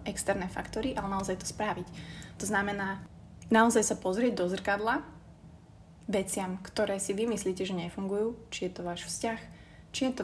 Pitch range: 185-225 Hz